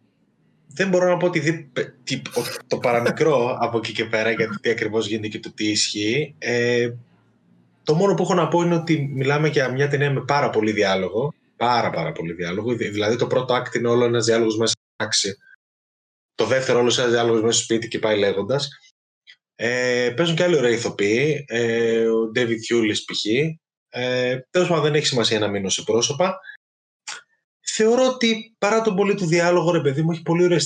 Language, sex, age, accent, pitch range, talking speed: Greek, male, 20-39, native, 110-150 Hz, 185 wpm